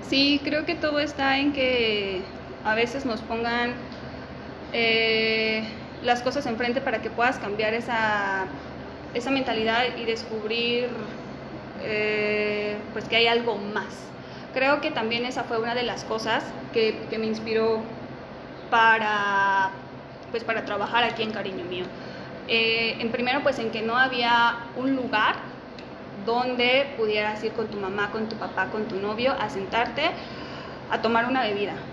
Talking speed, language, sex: 150 wpm, Spanish, female